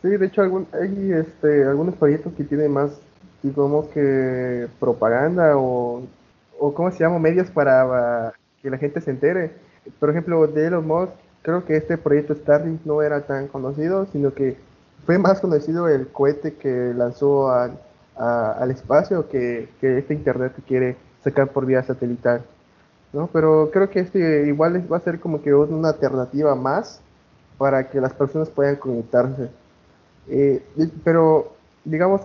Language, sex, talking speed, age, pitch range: Spanish, male, 160 wpm, 20-39, 135-160 Hz